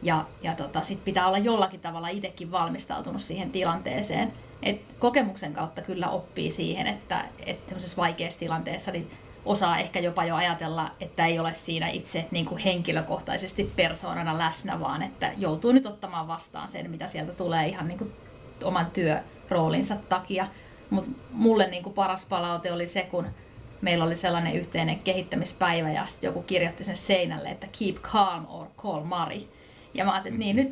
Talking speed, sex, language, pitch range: 165 wpm, female, Finnish, 170-195 Hz